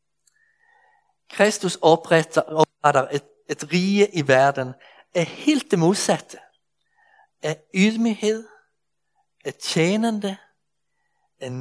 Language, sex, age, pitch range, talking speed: Danish, male, 60-79, 150-205 Hz, 90 wpm